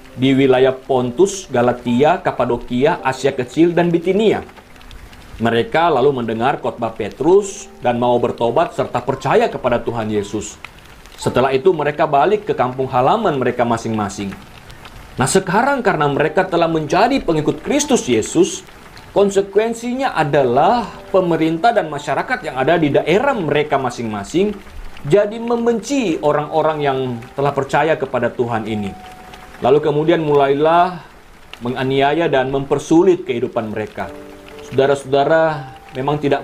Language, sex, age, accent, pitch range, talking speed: Indonesian, male, 40-59, native, 130-185 Hz, 115 wpm